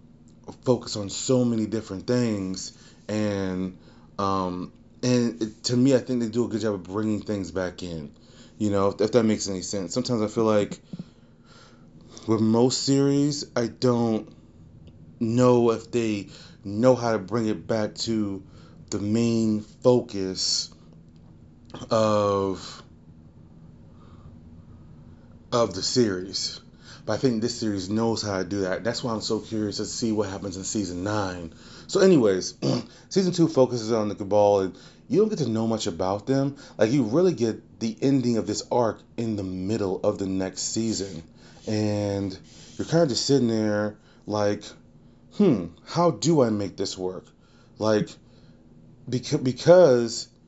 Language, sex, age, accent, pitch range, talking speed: English, male, 30-49, American, 95-120 Hz, 155 wpm